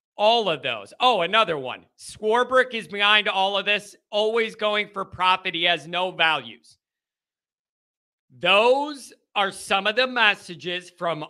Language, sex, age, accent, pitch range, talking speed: English, male, 40-59, American, 185-250 Hz, 145 wpm